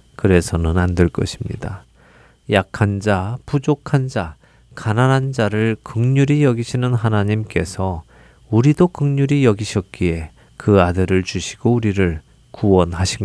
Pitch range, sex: 95-135 Hz, male